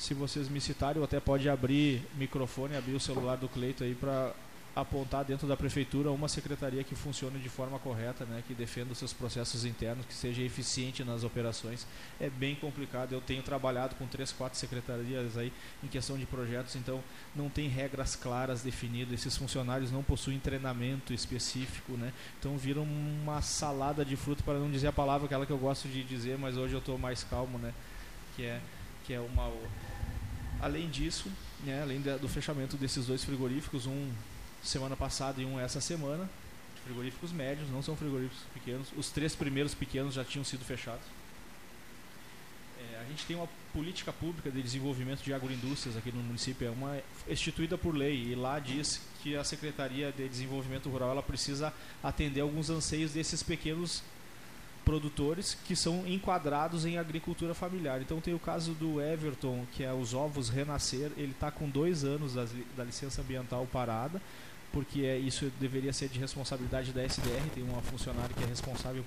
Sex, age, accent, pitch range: male, 20-39, Brazilian, 125-145 Hz